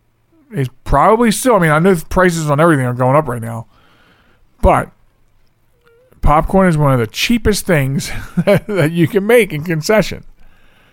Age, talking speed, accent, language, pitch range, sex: 40-59, 165 wpm, American, English, 120-175 Hz, male